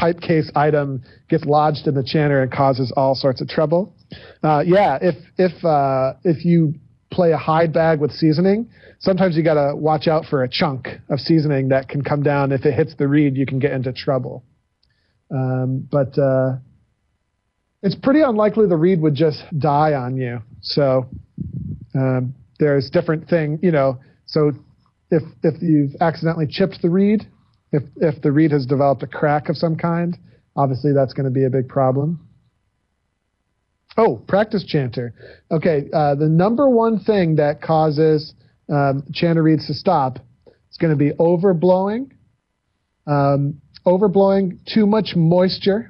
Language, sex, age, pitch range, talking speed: English, male, 40-59, 135-170 Hz, 160 wpm